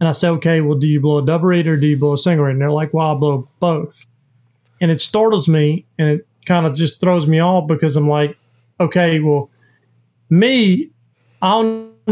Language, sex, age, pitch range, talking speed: English, male, 40-59, 145-185 Hz, 220 wpm